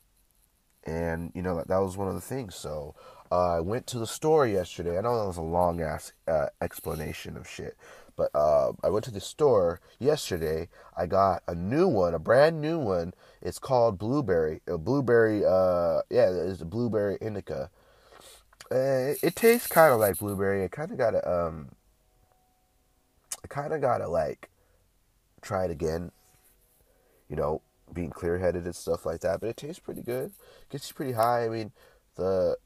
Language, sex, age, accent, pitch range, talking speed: English, male, 30-49, American, 85-110 Hz, 180 wpm